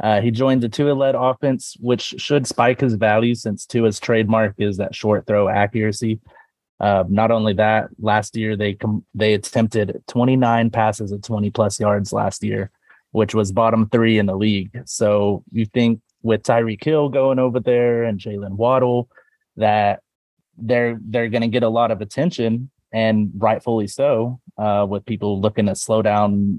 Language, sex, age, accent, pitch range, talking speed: English, male, 30-49, American, 100-120 Hz, 170 wpm